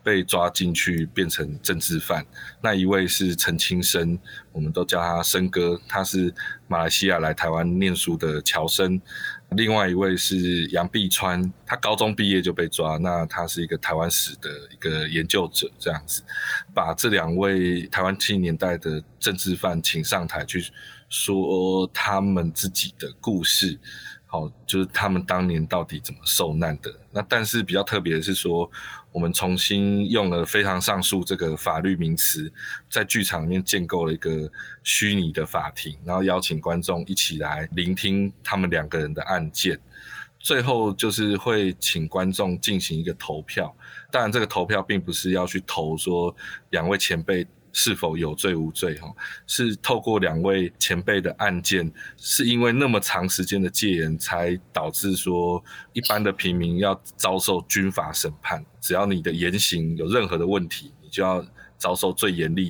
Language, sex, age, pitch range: Chinese, male, 20-39, 85-95 Hz